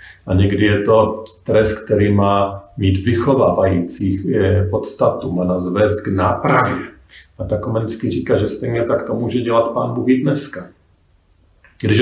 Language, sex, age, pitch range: Slovak, male, 40-59, 90-130 Hz